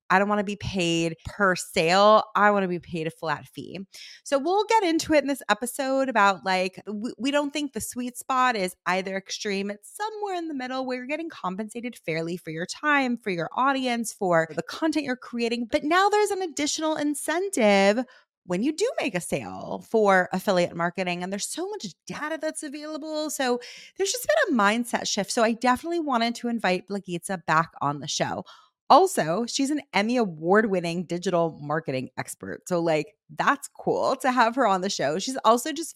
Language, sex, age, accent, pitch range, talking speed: English, female, 30-49, American, 175-255 Hz, 195 wpm